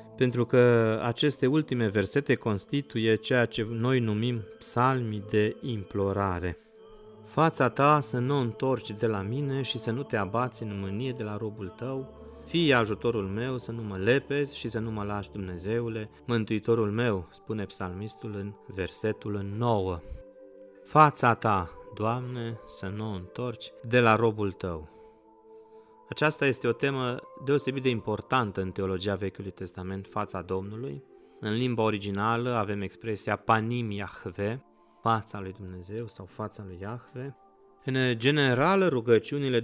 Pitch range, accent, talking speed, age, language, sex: 105-130 Hz, native, 140 wpm, 30-49, Romanian, male